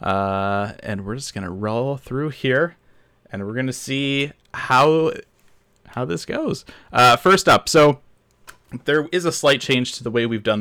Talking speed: 170 wpm